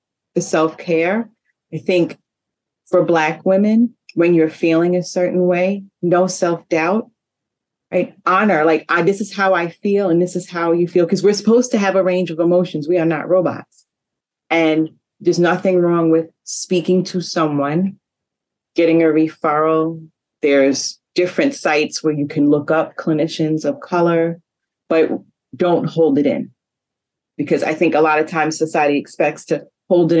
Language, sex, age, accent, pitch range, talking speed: English, female, 30-49, American, 155-180 Hz, 160 wpm